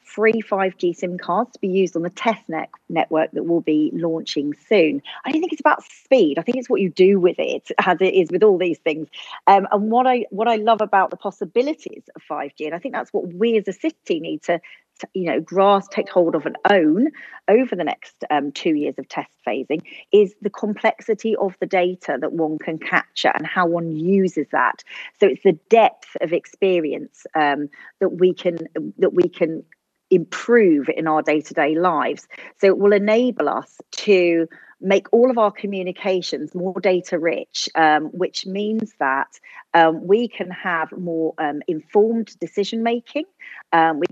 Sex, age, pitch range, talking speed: female, 40-59, 170-230 Hz, 190 wpm